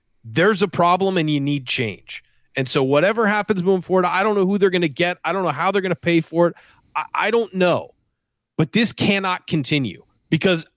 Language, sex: English, male